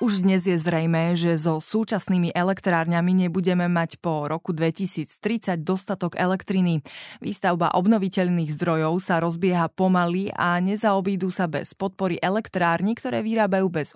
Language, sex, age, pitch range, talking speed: Slovak, female, 20-39, 165-195 Hz, 130 wpm